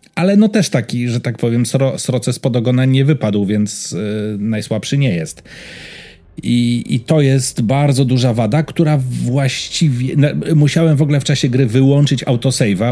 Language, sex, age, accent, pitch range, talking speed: Polish, male, 40-59, native, 105-140 Hz, 165 wpm